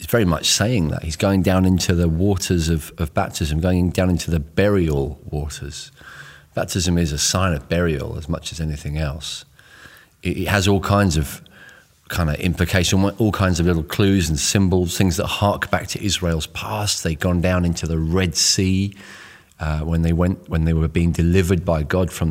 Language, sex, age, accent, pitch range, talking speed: English, male, 40-59, British, 80-95 Hz, 195 wpm